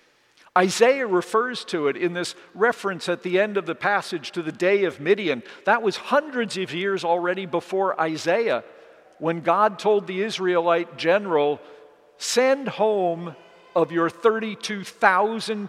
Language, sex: English, male